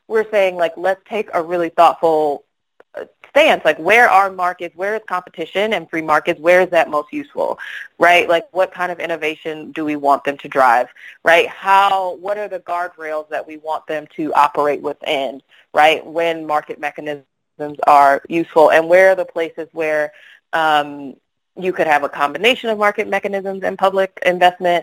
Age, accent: 30-49, American